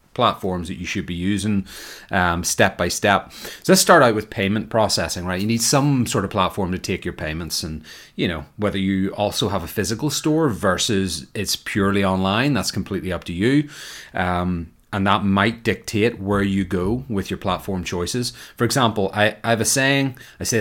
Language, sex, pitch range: English, male, 95-115 Hz